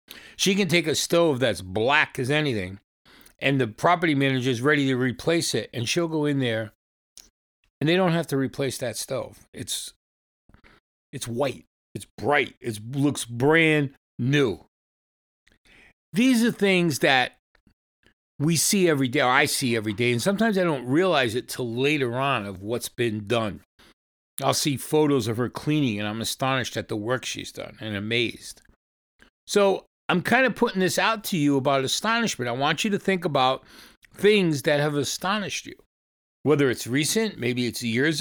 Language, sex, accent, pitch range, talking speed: English, male, American, 115-175 Hz, 175 wpm